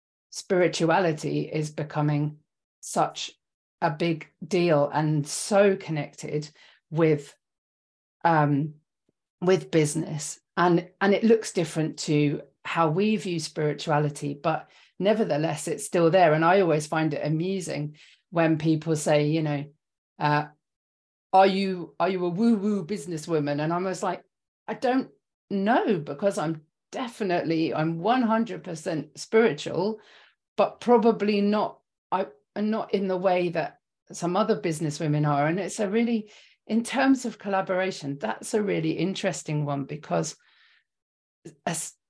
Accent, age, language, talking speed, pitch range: British, 40-59, English, 130 wpm, 155-195 Hz